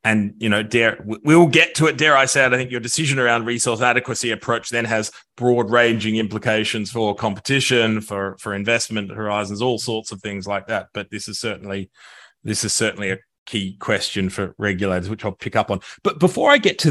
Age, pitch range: 30-49, 100-135 Hz